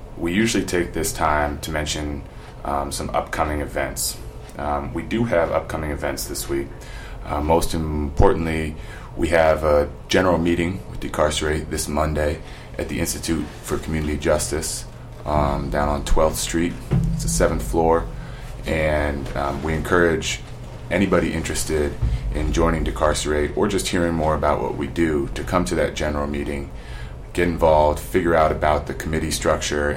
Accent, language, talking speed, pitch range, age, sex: American, English, 155 wpm, 70-85 Hz, 30-49, male